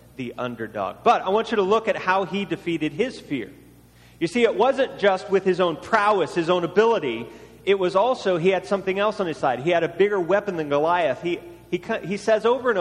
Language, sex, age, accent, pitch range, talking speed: English, male, 40-59, American, 140-215 Hz, 230 wpm